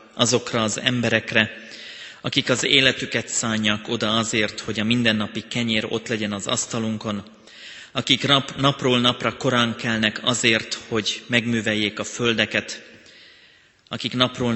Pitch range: 110-120 Hz